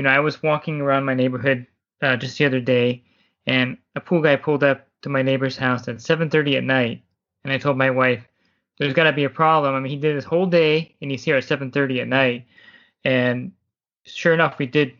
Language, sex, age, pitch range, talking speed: English, male, 20-39, 130-150 Hz, 230 wpm